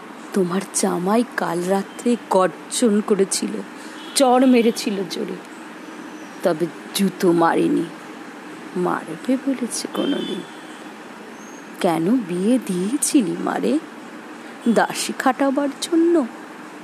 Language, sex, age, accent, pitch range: Bengali, female, 30-49, native, 210-300 Hz